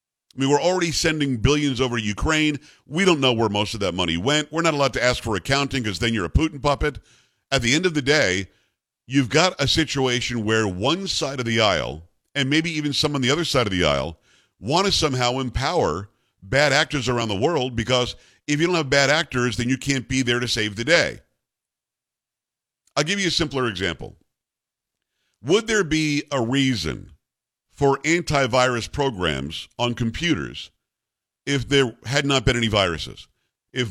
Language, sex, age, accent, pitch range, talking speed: English, male, 50-69, American, 110-145 Hz, 190 wpm